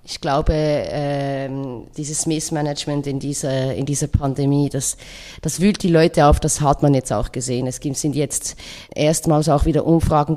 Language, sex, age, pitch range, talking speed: German, female, 30-49, 145-175 Hz, 160 wpm